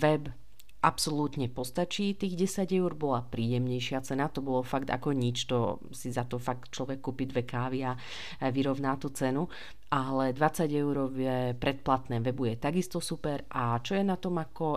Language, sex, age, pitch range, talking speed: Slovak, female, 40-59, 125-150 Hz, 165 wpm